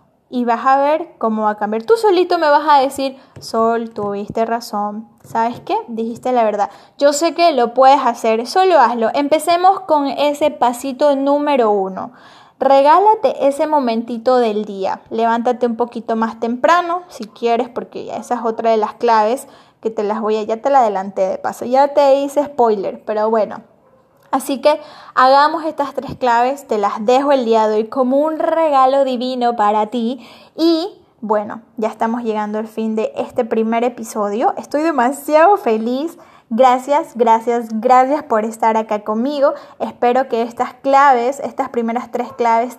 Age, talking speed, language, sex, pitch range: 10-29, 170 wpm, Spanish, female, 225-290 Hz